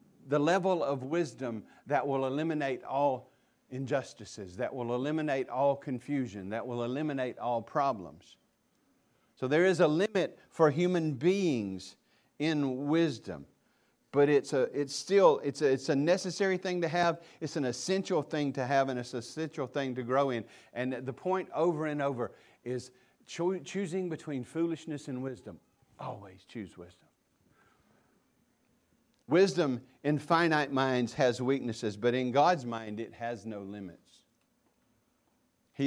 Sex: male